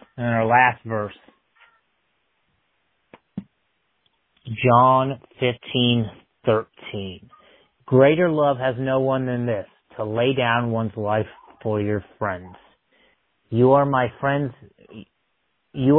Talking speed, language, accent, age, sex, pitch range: 100 wpm, English, American, 30-49, male, 110-135 Hz